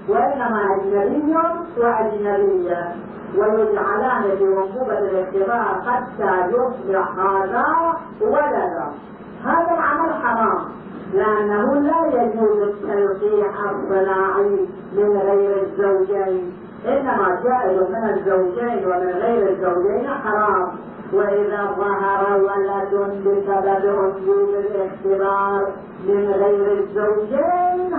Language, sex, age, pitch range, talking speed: Arabic, female, 40-59, 195-265 Hz, 85 wpm